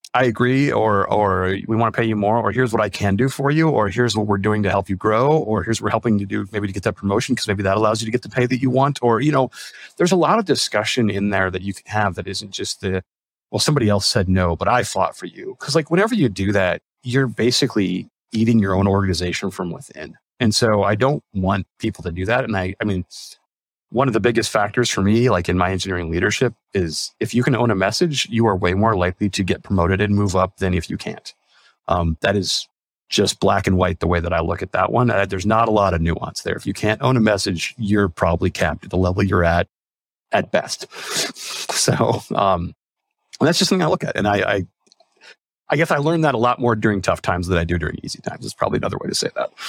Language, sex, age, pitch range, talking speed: English, male, 30-49, 95-120 Hz, 255 wpm